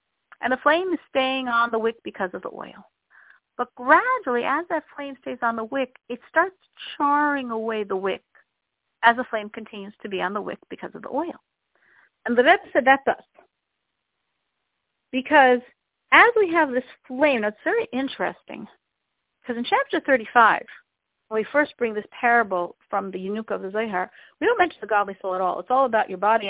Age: 50-69